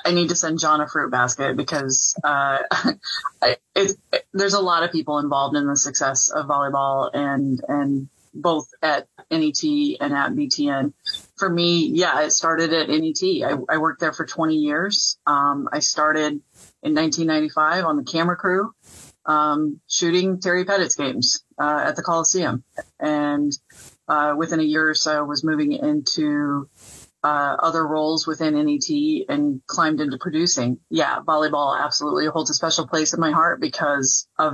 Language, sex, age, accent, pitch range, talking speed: English, female, 30-49, American, 140-165 Hz, 165 wpm